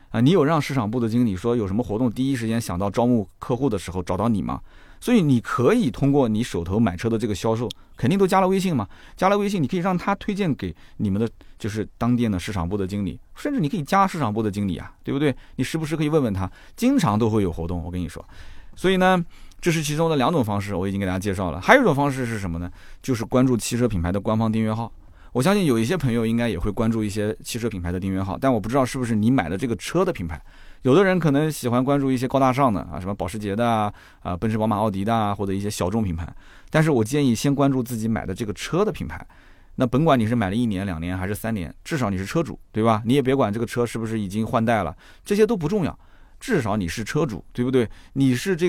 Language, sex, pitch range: Chinese, male, 100-135 Hz